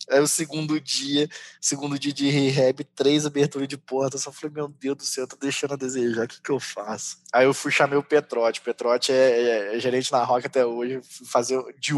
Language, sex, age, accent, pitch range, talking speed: Portuguese, male, 20-39, Brazilian, 120-145 Hz, 235 wpm